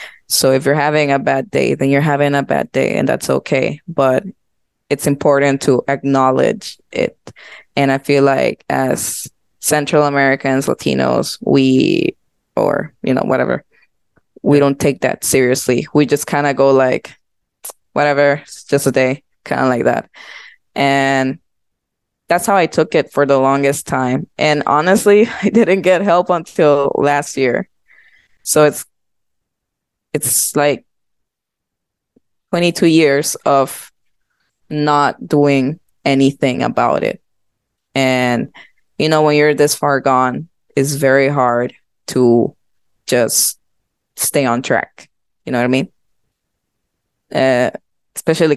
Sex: female